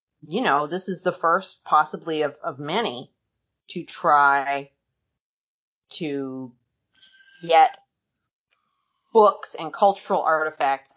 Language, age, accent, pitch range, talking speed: English, 40-59, American, 145-190 Hz, 100 wpm